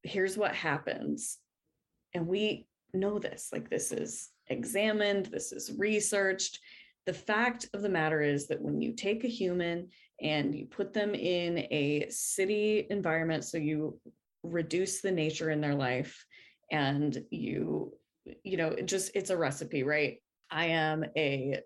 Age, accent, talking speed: 20-39, American, 150 wpm